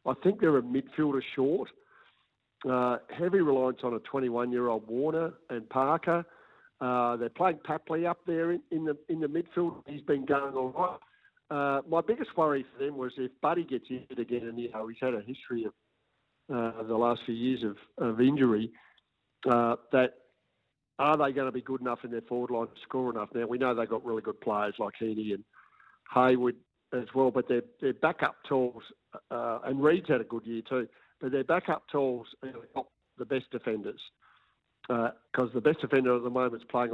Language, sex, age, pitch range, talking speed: English, male, 50-69, 120-140 Hz, 195 wpm